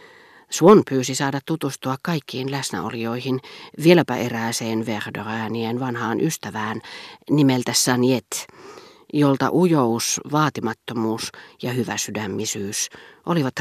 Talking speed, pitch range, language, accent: 90 wpm, 120-170 Hz, Finnish, native